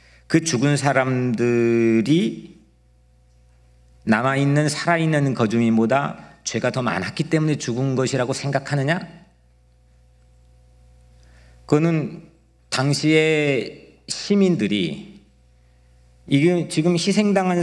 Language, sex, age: Korean, male, 40-59